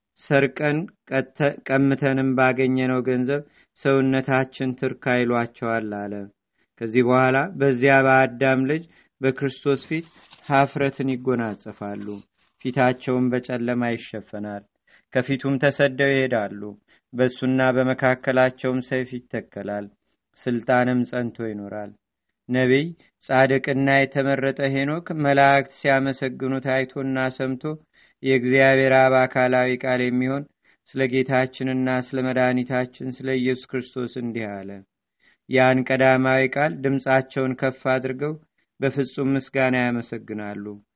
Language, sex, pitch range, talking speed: Amharic, male, 125-135 Hz, 85 wpm